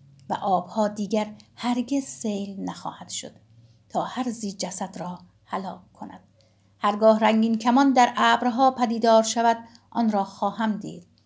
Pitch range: 195-235 Hz